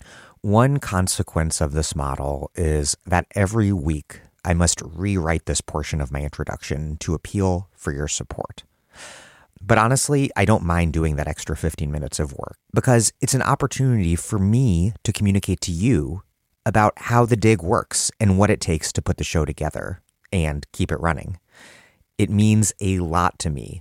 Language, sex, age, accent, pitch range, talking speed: English, male, 30-49, American, 75-100 Hz, 170 wpm